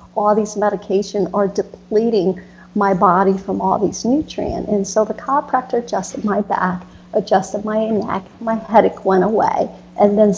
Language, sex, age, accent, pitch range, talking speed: English, female, 50-69, American, 190-220 Hz, 155 wpm